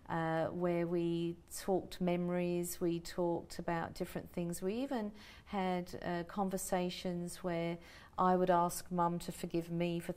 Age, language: 50-69, English